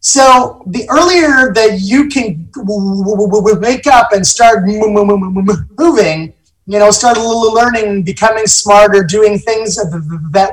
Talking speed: 125 wpm